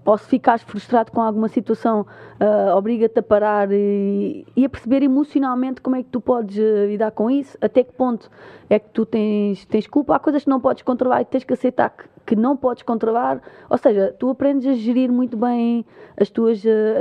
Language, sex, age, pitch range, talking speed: Portuguese, female, 20-39, 200-245 Hz, 210 wpm